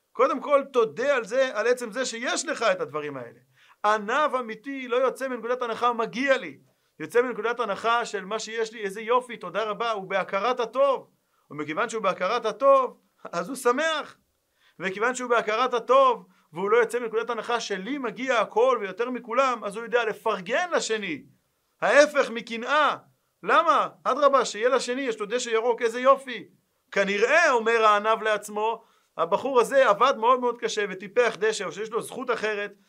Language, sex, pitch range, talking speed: Hebrew, male, 180-245 Hz, 165 wpm